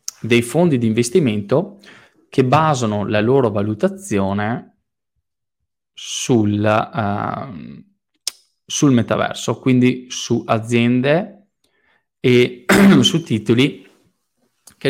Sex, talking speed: male, 75 wpm